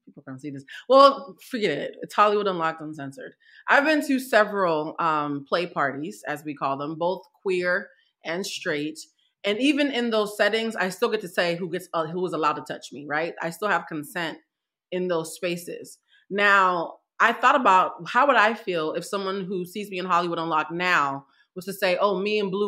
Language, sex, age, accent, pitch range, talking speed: English, female, 30-49, American, 165-210 Hz, 200 wpm